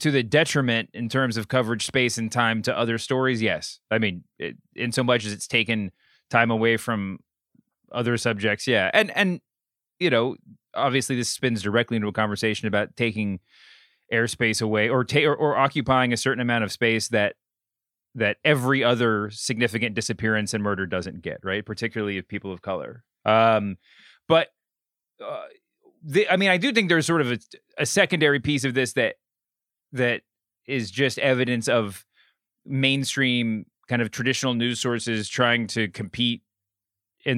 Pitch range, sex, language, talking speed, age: 105-125 Hz, male, English, 165 wpm, 30-49